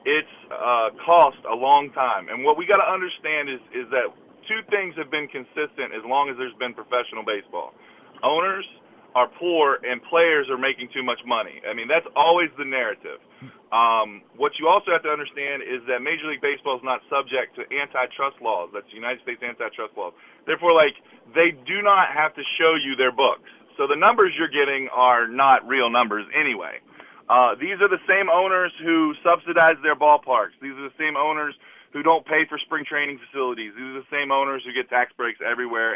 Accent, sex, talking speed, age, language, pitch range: American, male, 200 wpm, 30-49, English, 130-170 Hz